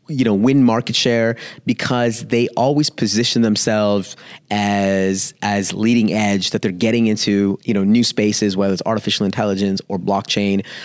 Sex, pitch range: male, 100-135 Hz